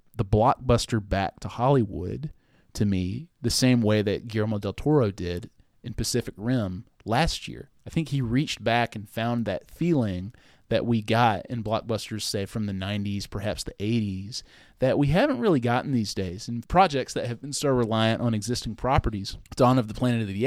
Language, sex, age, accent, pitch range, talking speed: English, male, 30-49, American, 105-130 Hz, 190 wpm